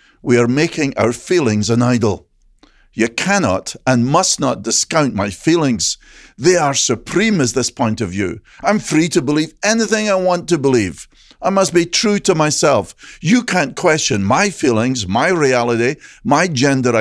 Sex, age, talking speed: male, 50-69, 165 wpm